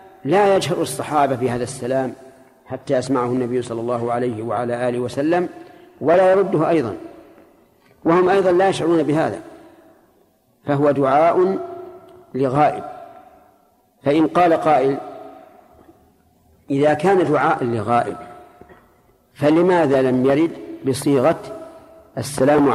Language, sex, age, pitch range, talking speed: Arabic, male, 50-69, 130-180 Hz, 100 wpm